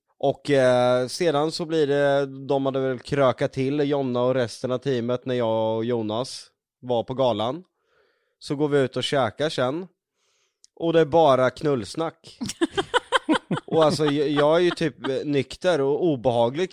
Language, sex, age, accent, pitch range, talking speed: Swedish, male, 20-39, native, 115-150 Hz, 160 wpm